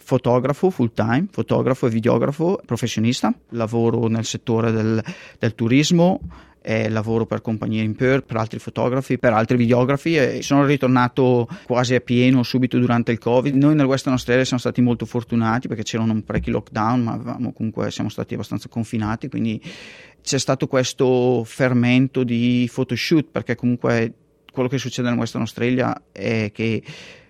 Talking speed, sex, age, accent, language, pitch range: 155 wpm, male, 30-49, native, Italian, 115-130 Hz